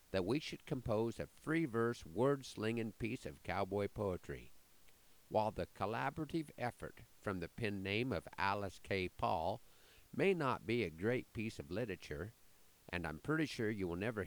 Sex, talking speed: male, 160 wpm